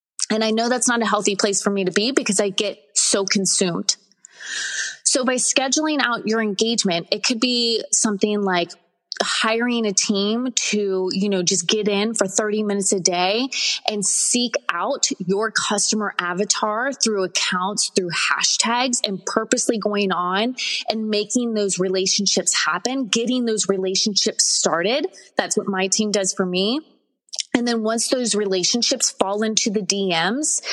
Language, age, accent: English, 20-39, American